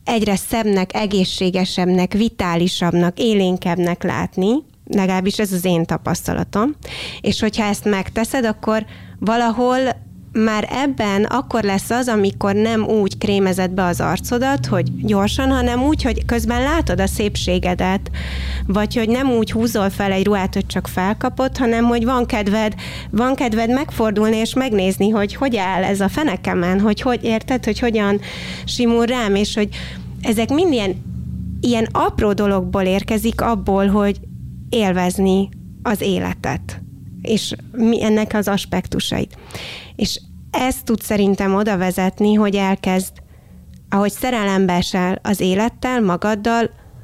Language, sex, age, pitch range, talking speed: Hungarian, female, 30-49, 185-225 Hz, 130 wpm